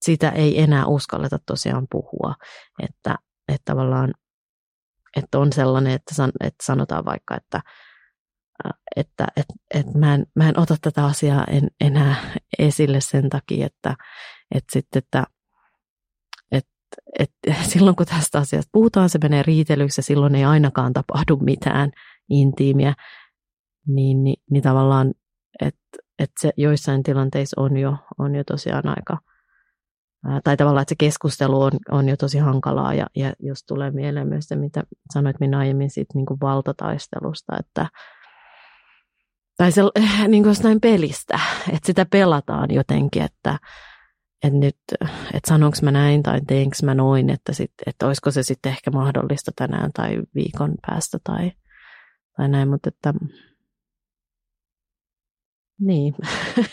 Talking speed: 135 wpm